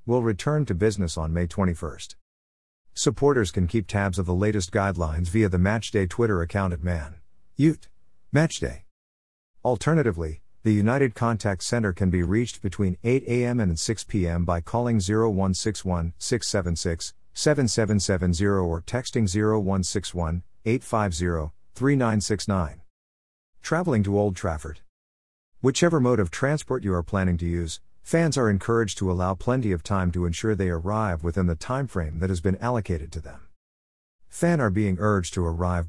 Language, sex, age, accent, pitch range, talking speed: English, male, 50-69, American, 85-110 Hz, 140 wpm